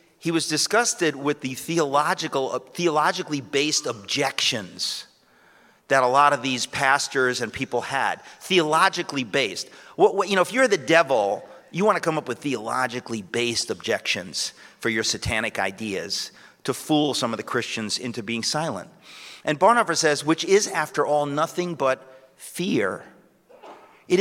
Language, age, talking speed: English, 40-59, 155 wpm